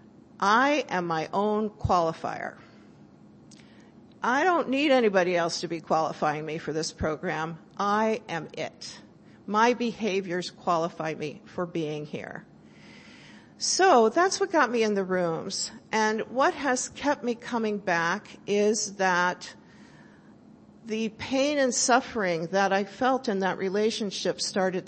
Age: 50-69